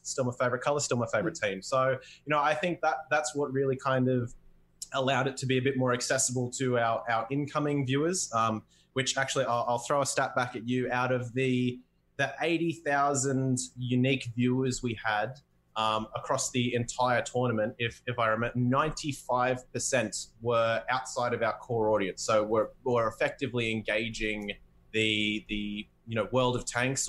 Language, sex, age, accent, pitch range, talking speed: English, male, 20-39, Australian, 115-135 Hz, 180 wpm